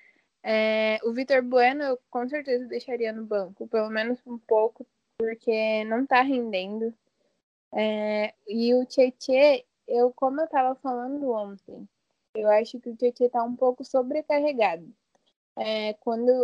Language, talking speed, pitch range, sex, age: Portuguese, 140 wpm, 220-265 Hz, female, 10-29